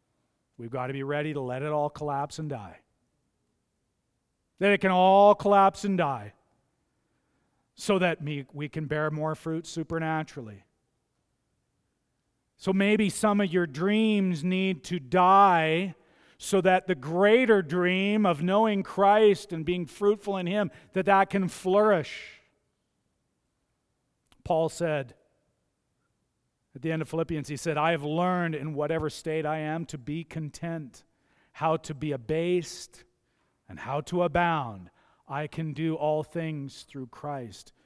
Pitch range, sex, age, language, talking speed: 150-190 Hz, male, 40-59, English, 140 wpm